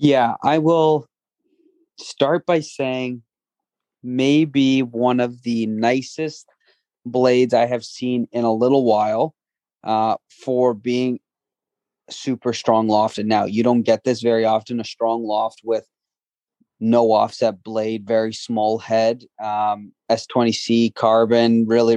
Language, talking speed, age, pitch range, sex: English, 130 wpm, 20-39, 115-130 Hz, male